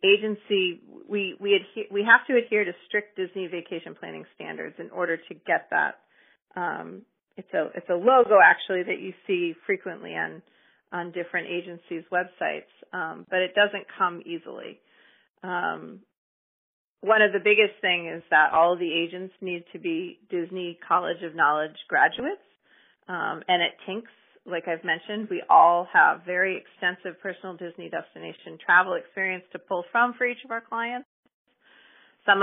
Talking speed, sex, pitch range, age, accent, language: 160 wpm, female, 175-215 Hz, 30-49, American, English